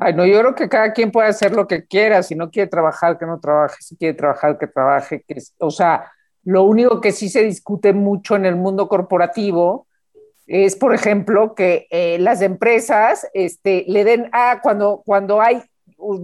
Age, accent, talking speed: 50-69, Mexican, 200 wpm